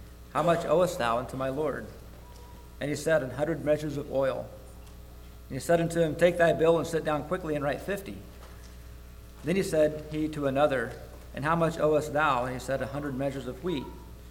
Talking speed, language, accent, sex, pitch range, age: 205 wpm, English, American, male, 130-165 Hz, 40-59